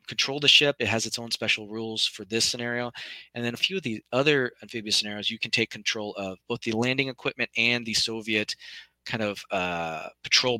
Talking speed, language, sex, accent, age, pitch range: 210 wpm, English, male, American, 20-39, 105-125 Hz